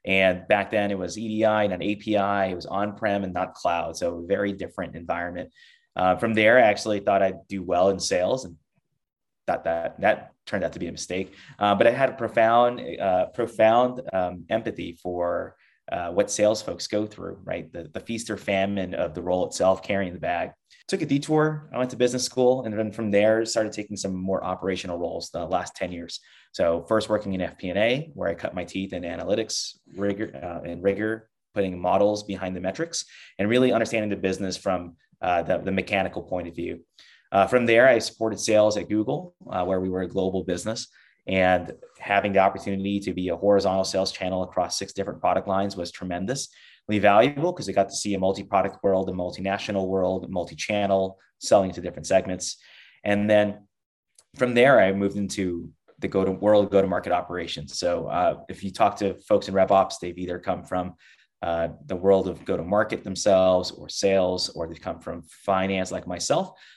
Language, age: English, 20-39